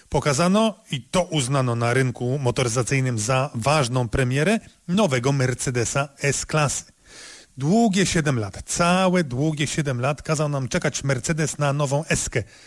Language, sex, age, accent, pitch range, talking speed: Polish, male, 30-49, native, 130-175 Hz, 130 wpm